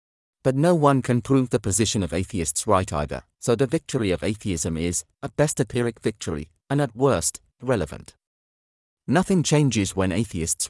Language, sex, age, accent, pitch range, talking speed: English, male, 40-59, British, 90-135 Hz, 170 wpm